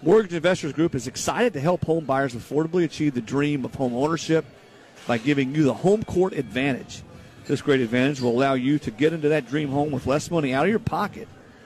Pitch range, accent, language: 130-165 Hz, American, English